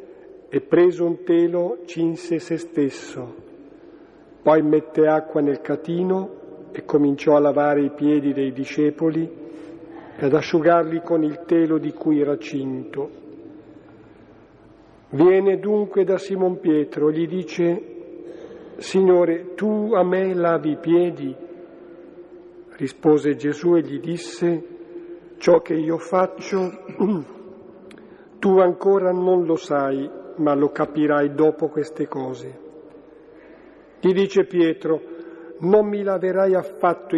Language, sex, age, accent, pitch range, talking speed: Italian, male, 50-69, native, 150-185 Hz, 115 wpm